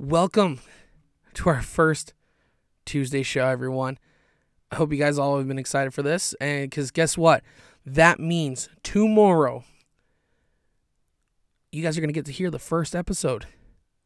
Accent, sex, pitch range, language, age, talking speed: American, male, 135-165 Hz, English, 20-39, 150 wpm